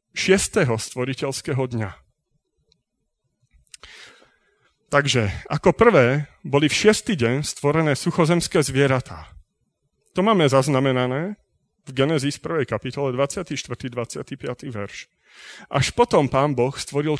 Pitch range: 120-160 Hz